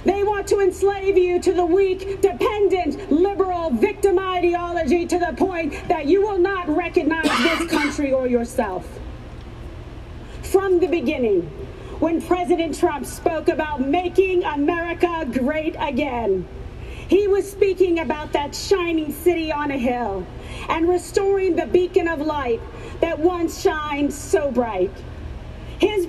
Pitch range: 310-380 Hz